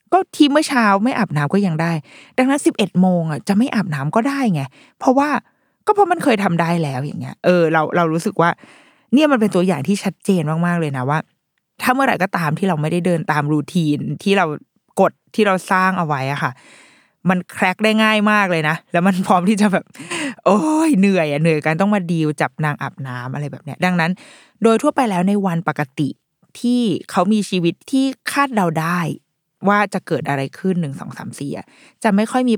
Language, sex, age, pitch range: Thai, female, 20-39, 160-220 Hz